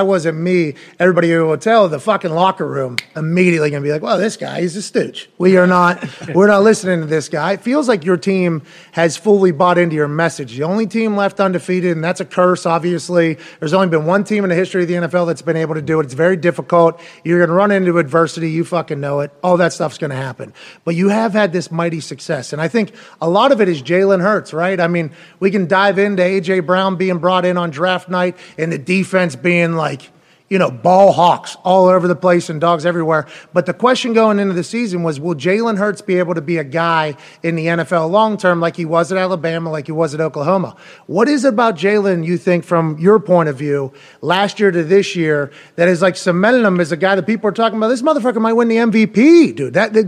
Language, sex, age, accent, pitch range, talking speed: English, male, 30-49, American, 165-195 Hz, 245 wpm